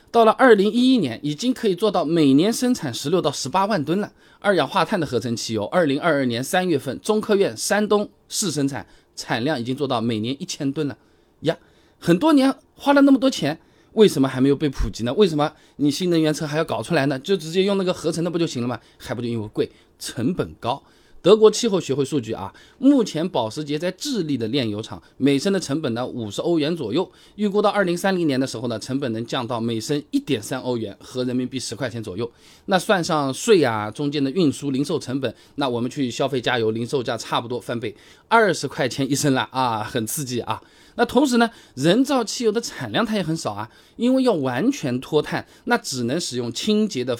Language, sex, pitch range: Chinese, male, 125-200 Hz